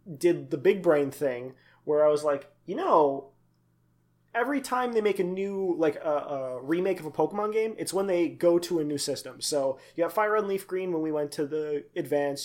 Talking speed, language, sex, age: 220 wpm, English, male, 20-39